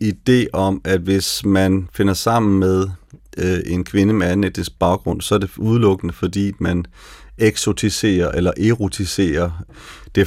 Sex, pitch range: male, 90-105 Hz